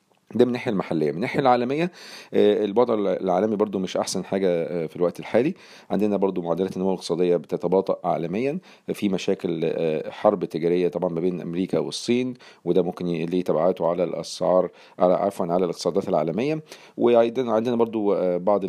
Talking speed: 150 wpm